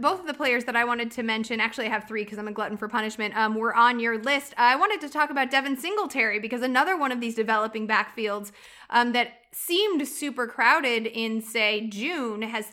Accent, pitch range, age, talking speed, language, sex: American, 225-275 Hz, 20-39, 220 wpm, English, female